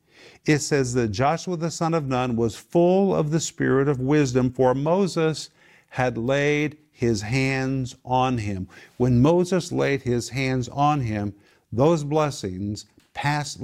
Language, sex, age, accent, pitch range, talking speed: English, male, 50-69, American, 120-150 Hz, 145 wpm